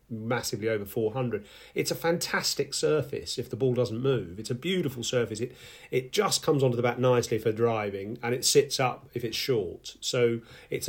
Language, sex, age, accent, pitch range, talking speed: English, male, 40-59, British, 110-130 Hz, 195 wpm